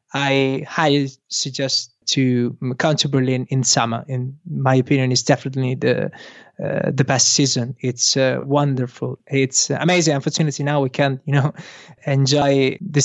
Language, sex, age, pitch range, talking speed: English, male, 20-39, 135-165 Hz, 150 wpm